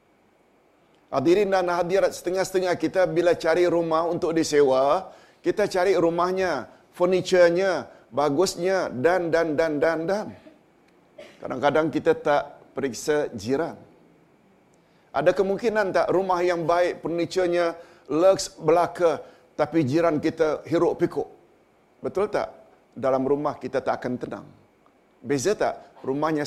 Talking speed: 110 wpm